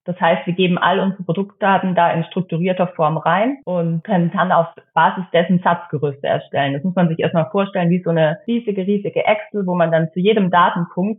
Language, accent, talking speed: German, German, 205 wpm